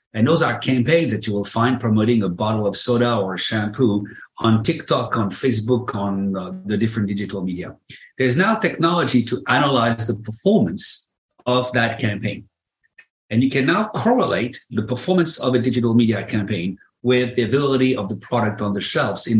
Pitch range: 105-130 Hz